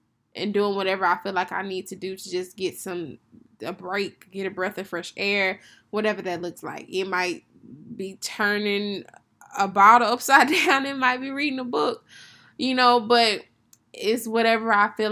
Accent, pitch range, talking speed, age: American, 185-235 Hz, 185 wpm, 10-29